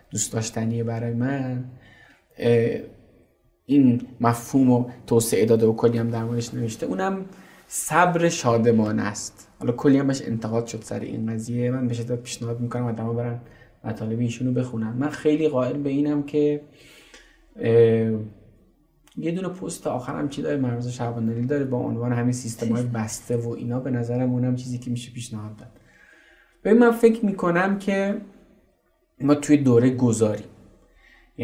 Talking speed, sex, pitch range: 145 wpm, male, 120-145 Hz